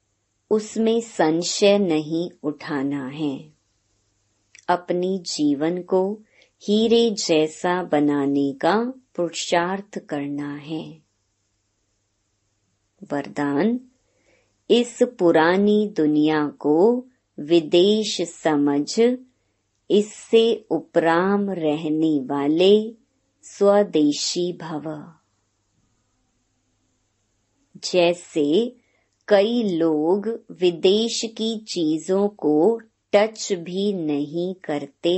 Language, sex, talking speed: Hindi, male, 65 wpm